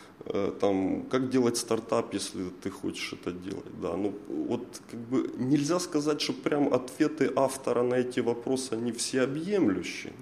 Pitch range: 105-130 Hz